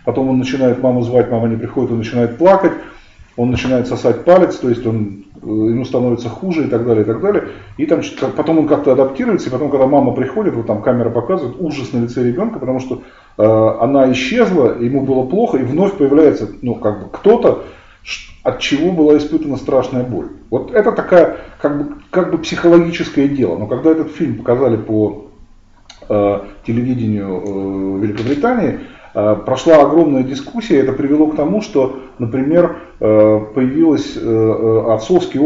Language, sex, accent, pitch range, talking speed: Russian, male, native, 110-145 Hz, 165 wpm